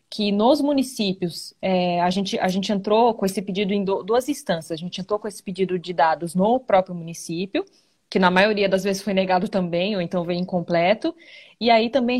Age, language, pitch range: 20-39, Portuguese, 185-230 Hz